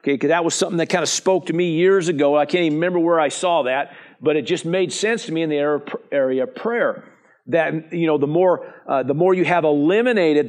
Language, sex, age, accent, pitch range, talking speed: English, male, 50-69, American, 165-215 Hz, 245 wpm